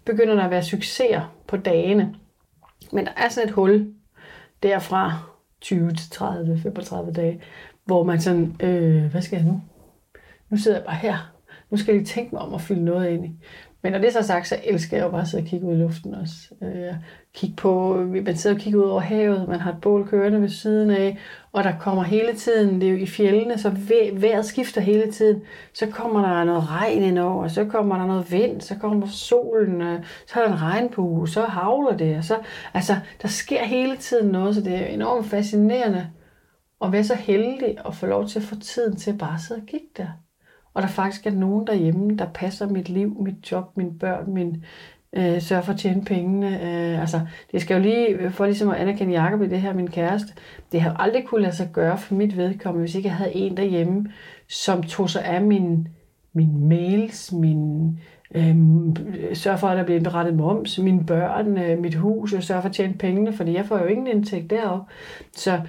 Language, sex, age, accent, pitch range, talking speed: Danish, female, 30-49, native, 175-210 Hz, 215 wpm